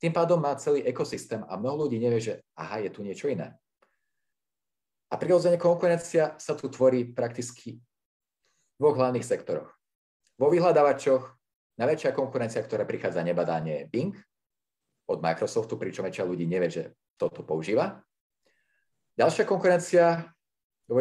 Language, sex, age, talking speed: Slovak, male, 40-59, 135 wpm